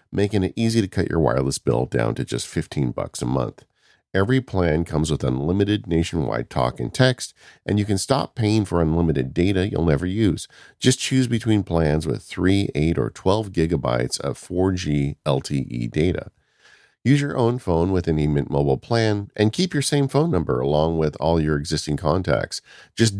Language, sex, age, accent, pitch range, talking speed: English, male, 40-59, American, 75-110 Hz, 185 wpm